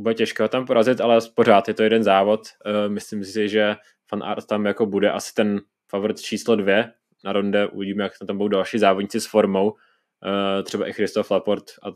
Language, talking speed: Czech, 190 wpm